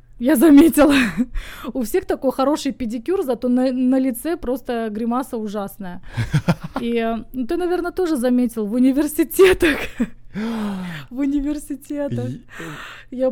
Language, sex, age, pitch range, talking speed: English, female, 20-39, 210-255 Hz, 115 wpm